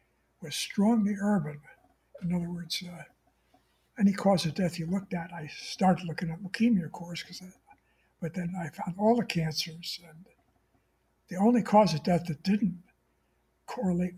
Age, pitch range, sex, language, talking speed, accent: 60-79, 165-200 Hz, male, English, 160 wpm, American